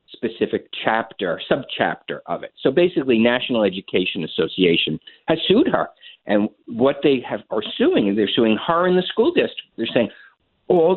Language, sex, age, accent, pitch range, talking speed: English, male, 50-69, American, 105-170 Hz, 160 wpm